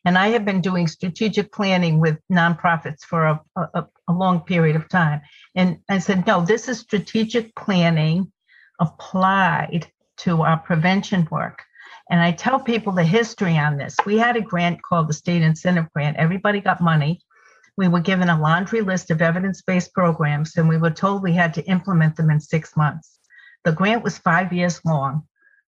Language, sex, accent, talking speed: English, female, American, 180 wpm